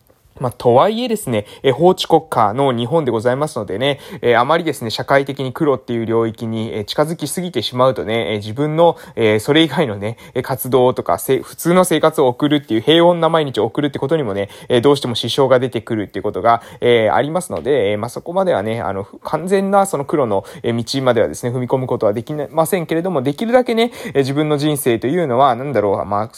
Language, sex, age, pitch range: Japanese, male, 20-39, 120-175 Hz